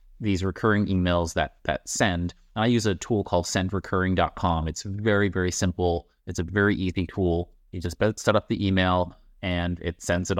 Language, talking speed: English, 180 wpm